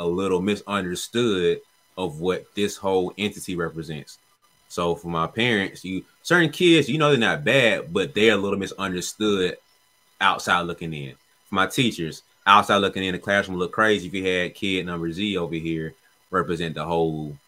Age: 20-39